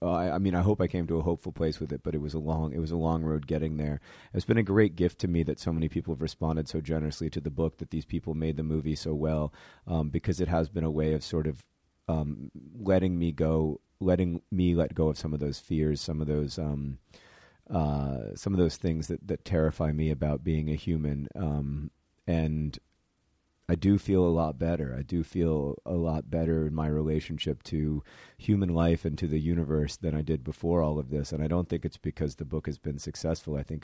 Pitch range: 75-85 Hz